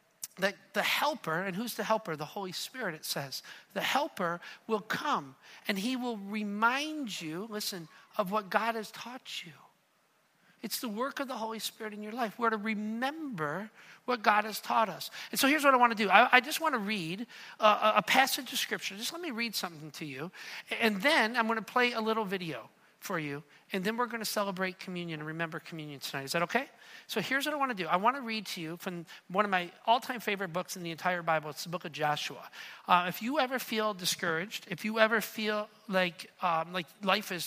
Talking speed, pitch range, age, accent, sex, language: 225 wpm, 180-225 Hz, 50-69, American, male, English